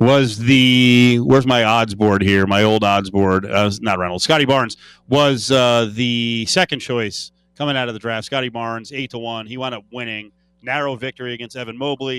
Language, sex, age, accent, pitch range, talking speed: English, male, 30-49, American, 105-130 Hz, 195 wpm